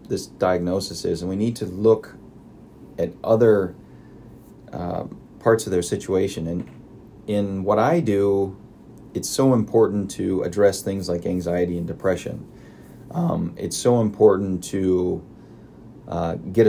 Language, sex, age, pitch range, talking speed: English, male, 30-49, 90-105 Hz, 135 wpm